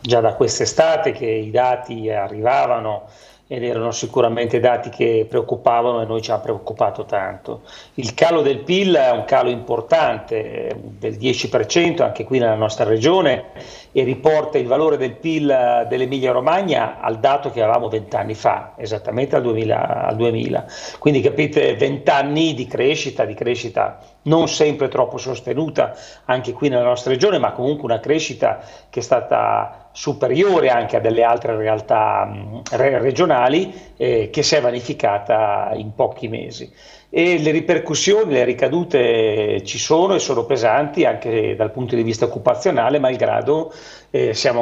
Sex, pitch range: male, 115-150 Hz